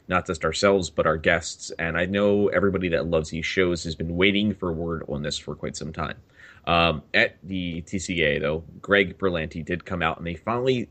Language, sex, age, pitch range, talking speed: English, male, 30-49, 80-95 Hz, 210 wpm